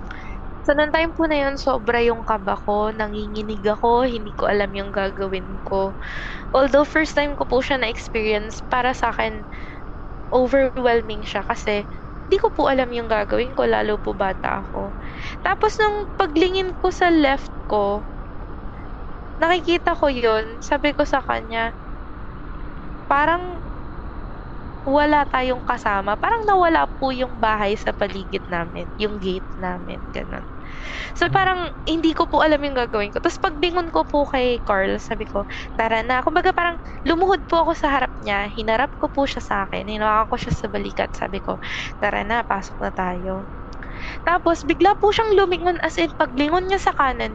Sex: female